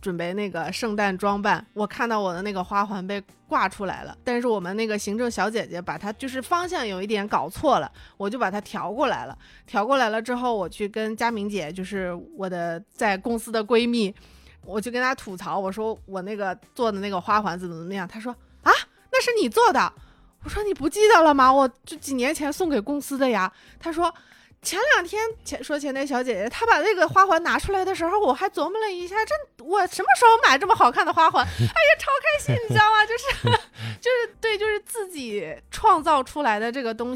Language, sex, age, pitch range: Chinese, female, 20-39, 200-310 Hz